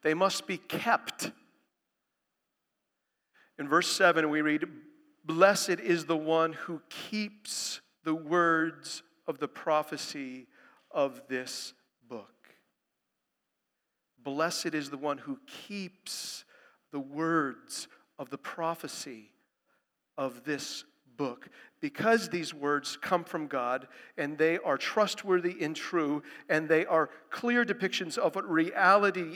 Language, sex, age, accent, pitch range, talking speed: English, male, 50-69, American, 150-195 Hz, 115 wpm